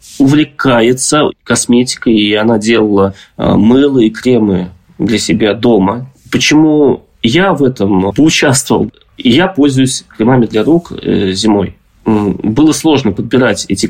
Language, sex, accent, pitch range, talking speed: Russian, male, native, 110-145 Hz, 110 wpm